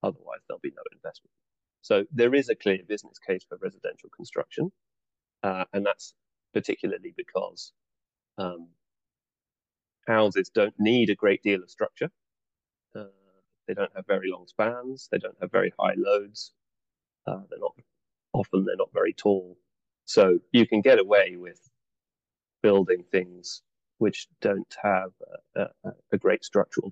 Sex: male